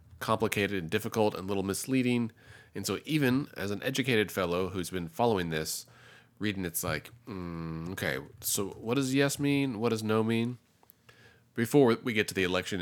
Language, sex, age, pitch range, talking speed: English, male, 30-49, 90-120 Hz, 180 wpm